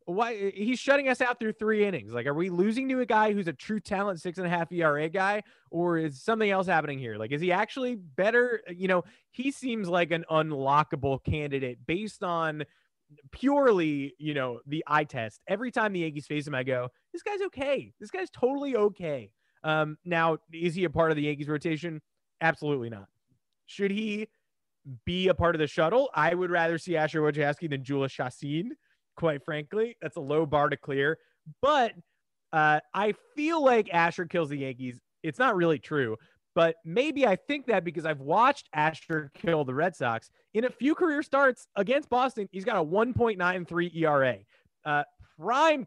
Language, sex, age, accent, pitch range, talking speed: English, male, 20-39, American, 150-210 Hz, 190 wpm